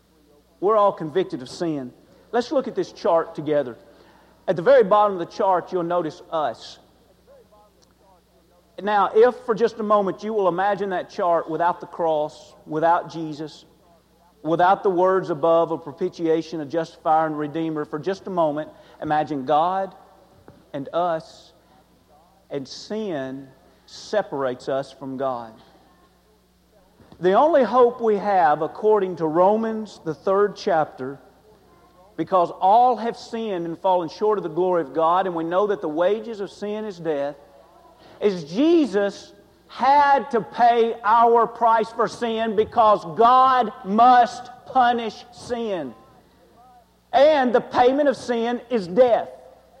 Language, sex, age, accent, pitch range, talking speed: English, male, 50-69, American, 160-225 Hz, 140 wpm